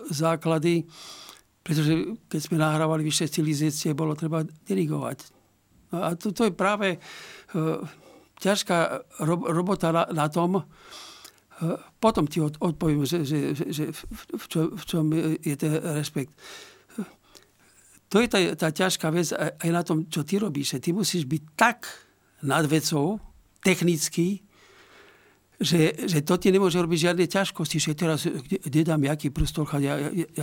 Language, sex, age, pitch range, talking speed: Slovak, male, 60-79, 150-175 Hz, 125 wpm